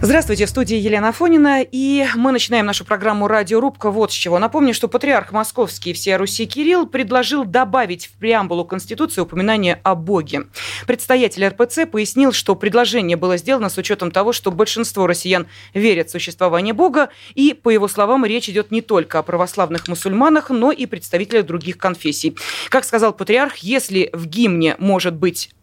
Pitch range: 185-250 Hz